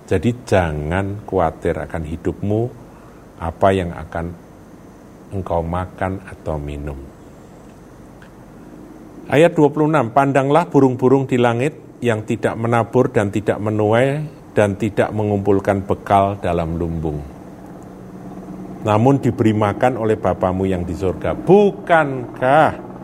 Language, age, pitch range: Indonesian, 50-69, 85-120 Hz